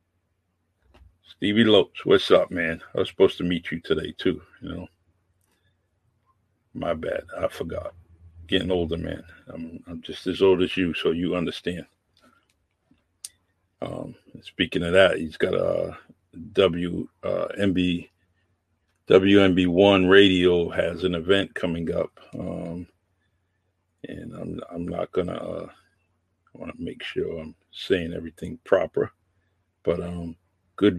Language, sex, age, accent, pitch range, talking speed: English, male, 50-69, American, 85-95 Hz, 130 wpm